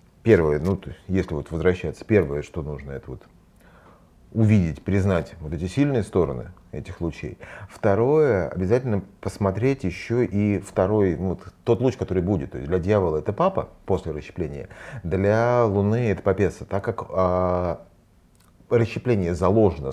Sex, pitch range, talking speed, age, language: male, 90-115 Hz, 145 wpm, 30-49, Russian